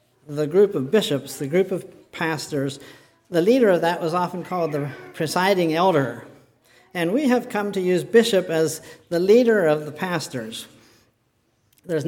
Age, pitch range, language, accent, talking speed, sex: 50-69, 150-195 Hz, English, American, 160 wpm, male